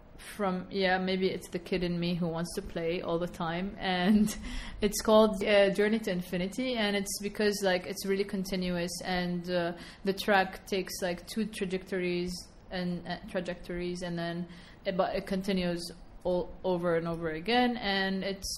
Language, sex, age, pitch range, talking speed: English, female, 20-39, 175-205 Hz, 170 wpm